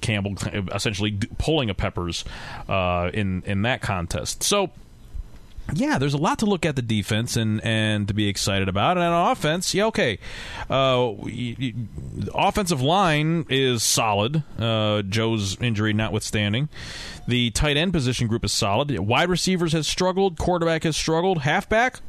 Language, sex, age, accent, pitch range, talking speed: English, male, 30-49, American, 110-165 Hz, 155 wpm